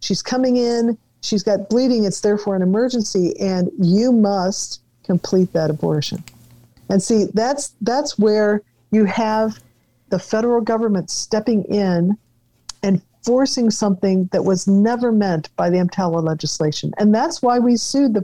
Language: English